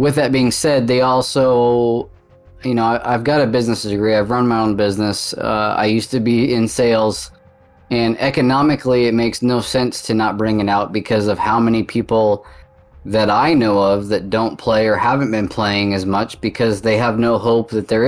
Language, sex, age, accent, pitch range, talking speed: English, male, 20-39, American, 105-125 Hz, 205 wpm